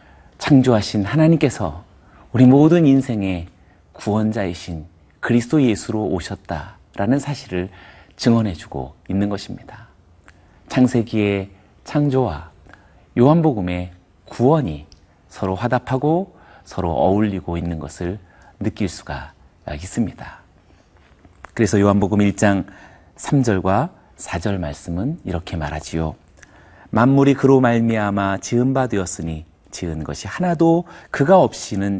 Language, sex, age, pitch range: Korean, male, 40-59, 85-120 Hz